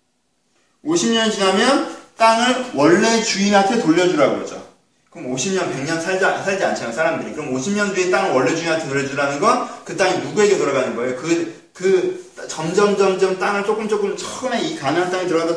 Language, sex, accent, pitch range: Korean, male, native, 175-240 Hz